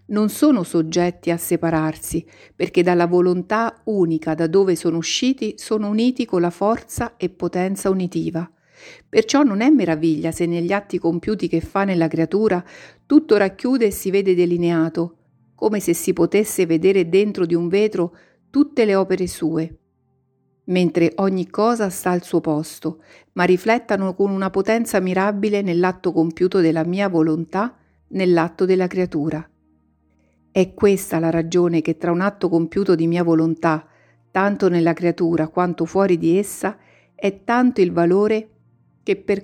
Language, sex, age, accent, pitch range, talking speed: Italian, female, 50-69, native, 165-200 Hz, 150 wpm